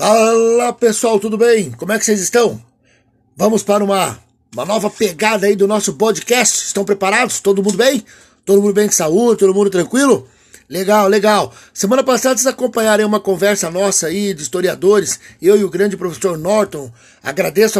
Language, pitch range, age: Portuguese, 190-235 Hz, 50-69